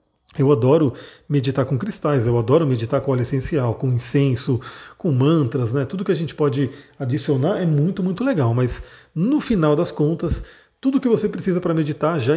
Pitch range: 135-185 Hz